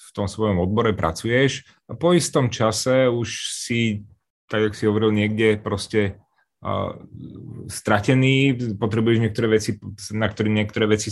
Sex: male